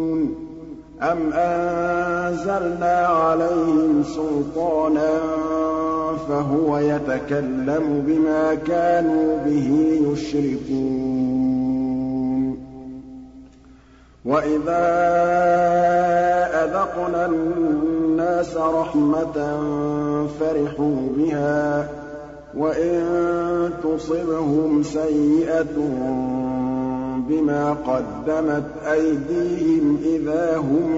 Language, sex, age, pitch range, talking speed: Arabic, male, 50-69, 145-170 Hz, 45 wpm